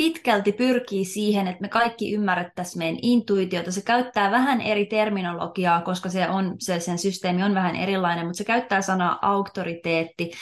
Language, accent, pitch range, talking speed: Finnish, native, 170-205 Hz, 160 wpm